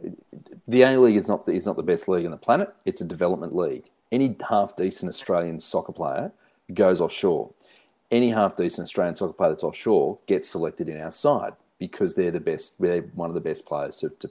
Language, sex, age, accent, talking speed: English, male, 40-59, Australian, 200 wpm